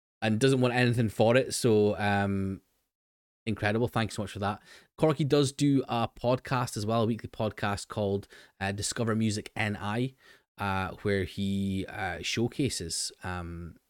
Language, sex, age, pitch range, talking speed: English, male, 20-39, 95-115 Hz, 150 wpm